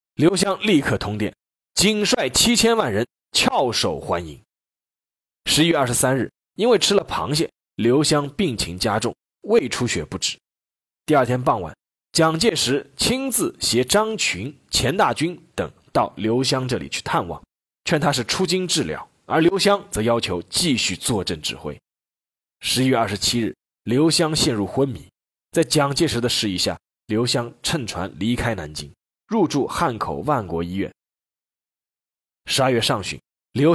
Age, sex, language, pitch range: 20-39, male, Chinese, 105-175 Hz